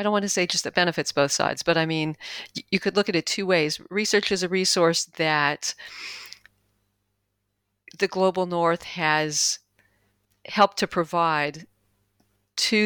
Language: English